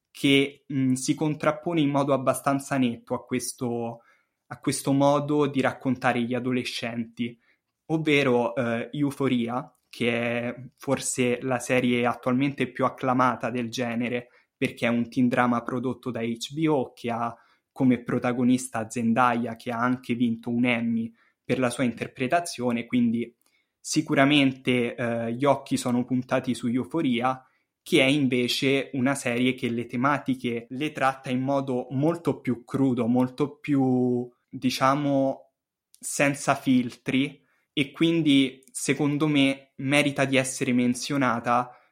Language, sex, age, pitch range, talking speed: Italian, male, 10-29, 120-135 Hz, 130 wpm